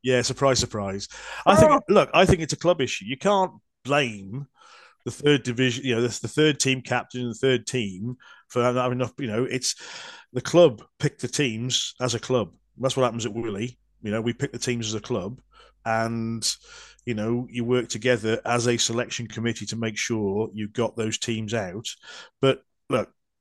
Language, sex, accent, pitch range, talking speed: English, male, British, 110-130 Hz, 200 wpm